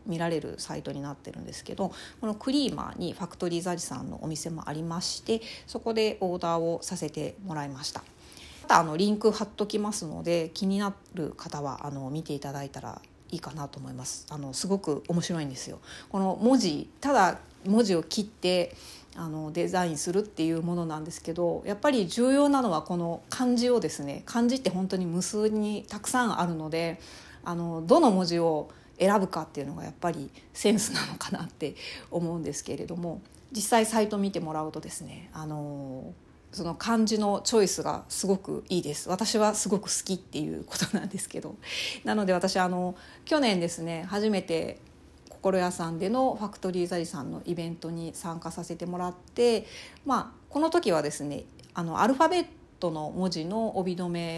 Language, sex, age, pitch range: Japanese, female, 40-59, 160-210 Hz